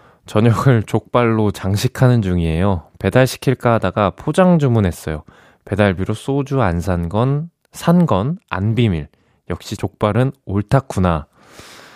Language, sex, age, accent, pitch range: Korean, male, 20-39, native, 95-130 Hz